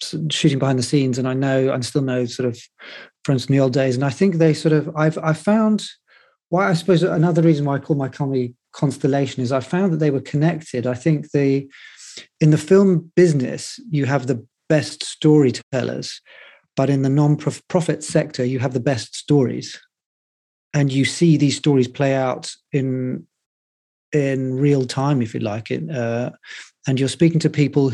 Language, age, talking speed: English, 40-59, 190 wpm